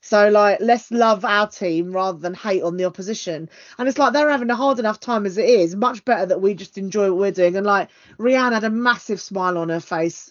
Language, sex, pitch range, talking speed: English, female, 180-240 Hz, 250 wpm